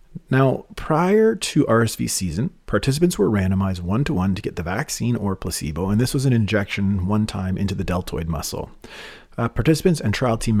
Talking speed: 180 wpm